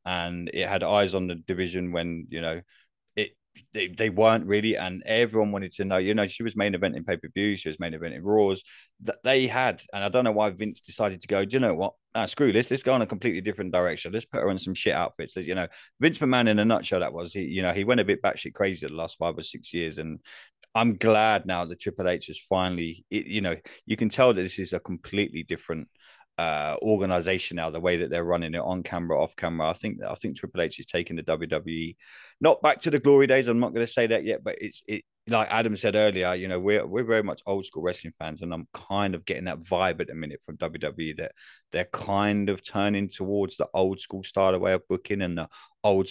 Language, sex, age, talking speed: English, male, 20-39, 250 wpm